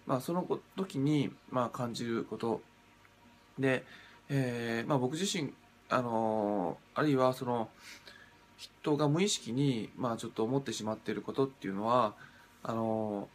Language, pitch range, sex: Japanese, 105-140 Hz, male